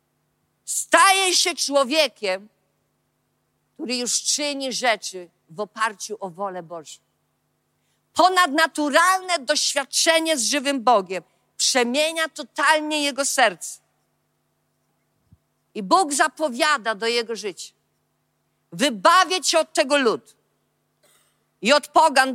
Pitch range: 235-320 Hz